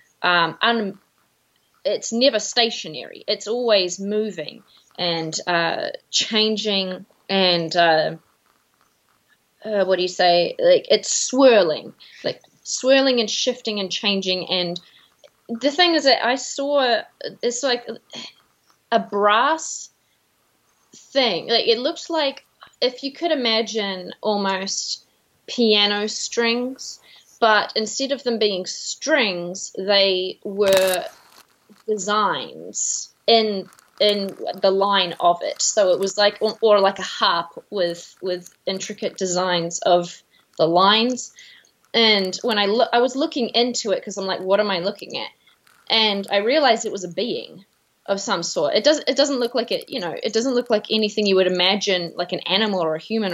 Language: English